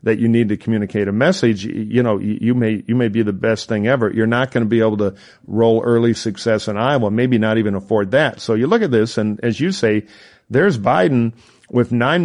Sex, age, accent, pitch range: male, 50-69, American, 105-125 Hz